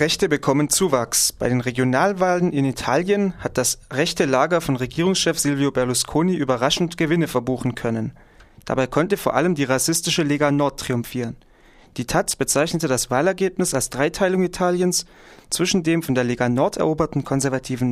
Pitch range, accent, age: 130-170 Hz, German, 30-49